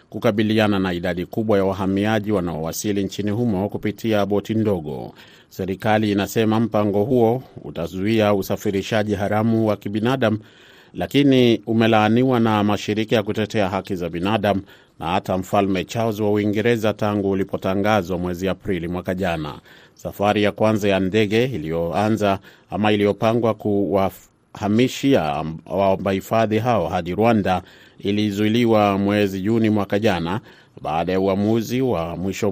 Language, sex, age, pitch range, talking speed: Swahili, male, 30-49, 95-110 Hz, 125 wpm